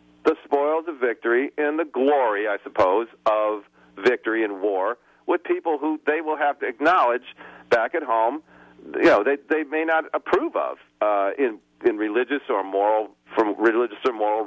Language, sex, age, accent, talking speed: English, male, 50-69, American, 180 wpm